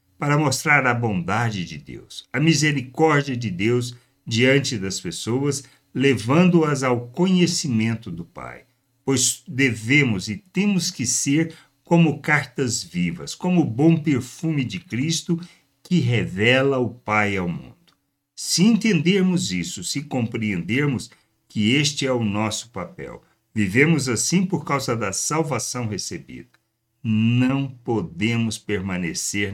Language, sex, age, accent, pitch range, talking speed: Portuguese, male, 60-79, Brazilian, 110-145 Hz, 120 wpm